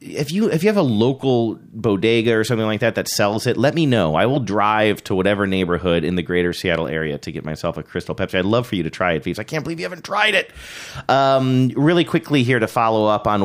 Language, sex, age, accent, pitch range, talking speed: English, male, 30-49, American, 90-125 Hz, 260 wpm